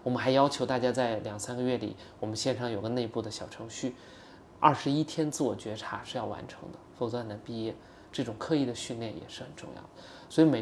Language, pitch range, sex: Chinese, 115-150 Hz, male